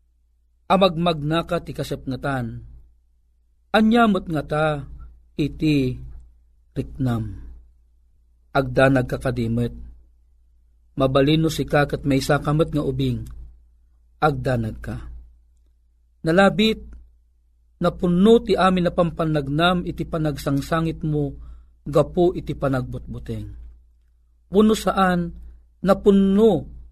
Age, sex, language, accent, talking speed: 40-59, male, Filipino, native, 80 wpm